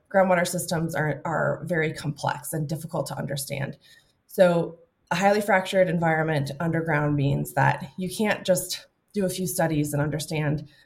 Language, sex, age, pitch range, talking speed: English, female, 20-39, 150-180 Hz, 150 wpm